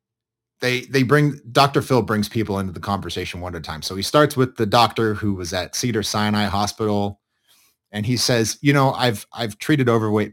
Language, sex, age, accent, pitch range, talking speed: English, male, 30-49, American, 105-135 Hz, 205 wpm